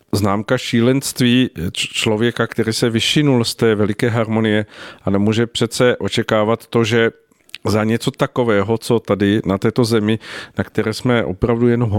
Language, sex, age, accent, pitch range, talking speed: Czech, male, 50-69, native, 105-120 Hz, 145 wpm